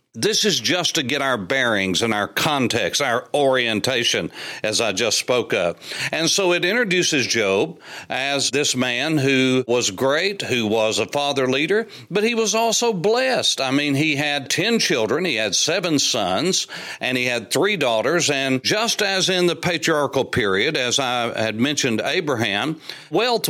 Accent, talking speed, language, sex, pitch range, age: American, 170 wpm, English, male, 125-180 Hz, 60-79